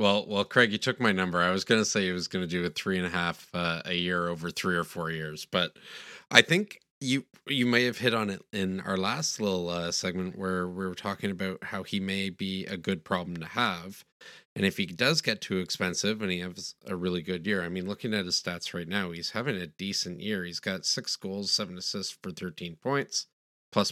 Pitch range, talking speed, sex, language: 90-105 Hz, 245 wpm, male, English